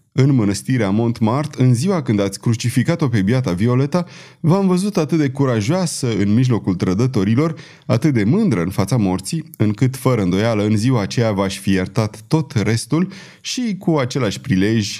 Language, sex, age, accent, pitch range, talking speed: Romanian, male, 30-49, native, 105-150 Hz, 160 wpm